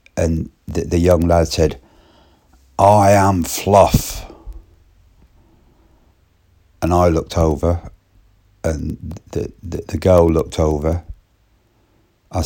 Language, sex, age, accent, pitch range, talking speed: English, male, 60-79, British, 85-110 Hz, 100 wpm